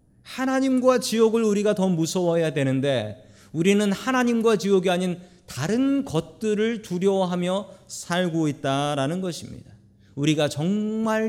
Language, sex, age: Korean, male, 40-59